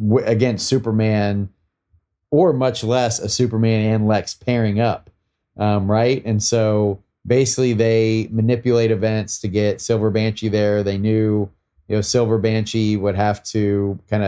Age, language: 30-49, English